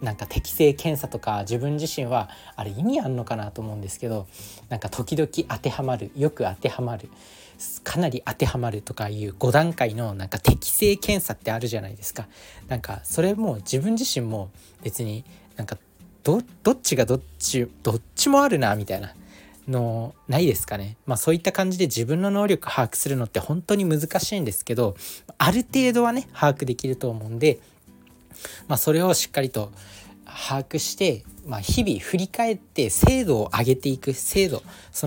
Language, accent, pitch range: Japanese, native, 105-155 Hz